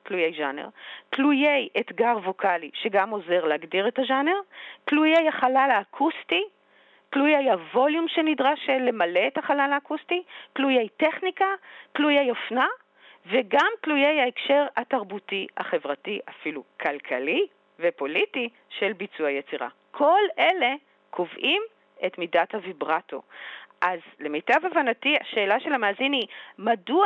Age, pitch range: 40-59, 195-290 Hz